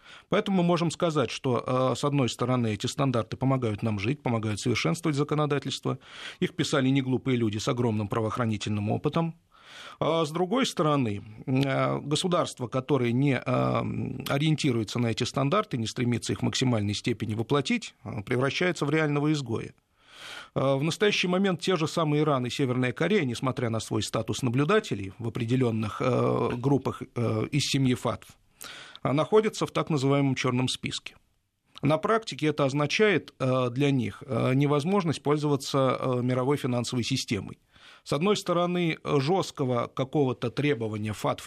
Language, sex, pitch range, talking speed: Russian, male, 115-150 Hz, 130 wpm